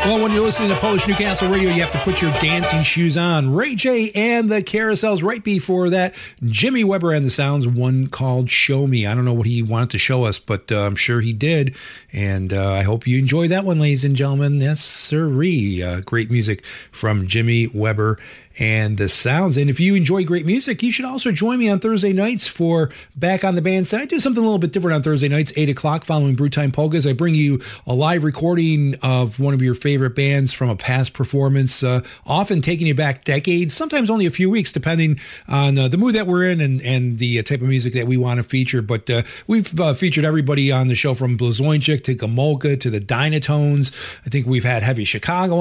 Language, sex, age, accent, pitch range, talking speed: English, male, 40-59, American, 125-180 Hz, 230 wpm